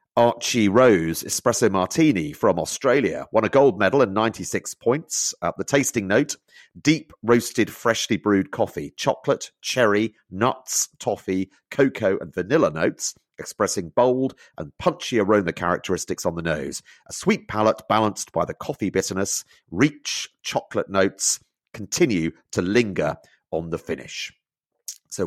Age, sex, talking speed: 40-59, male, 135 wpm